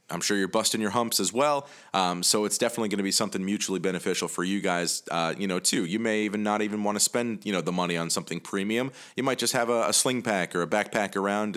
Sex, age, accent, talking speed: male, 30-49, American, 270 wpm